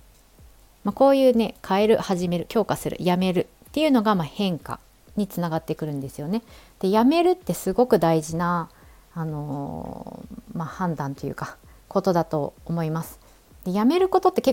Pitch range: 165-230 Hz